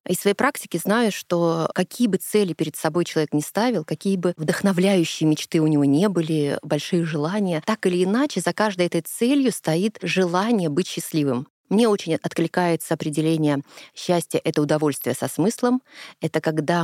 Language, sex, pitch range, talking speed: Russian, female, 160-215 Hz, 160 wpm